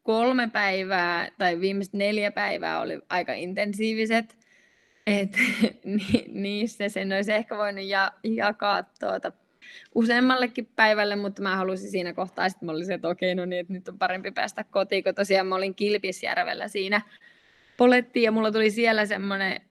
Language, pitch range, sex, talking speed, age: Finnish, 190-210 Hz, female, 150 wpm, 20-39